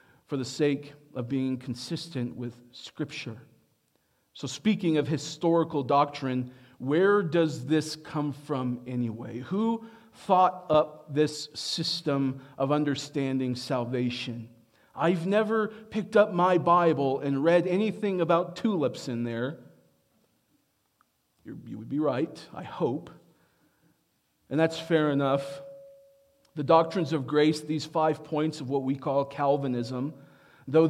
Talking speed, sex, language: 120 wpm, male, English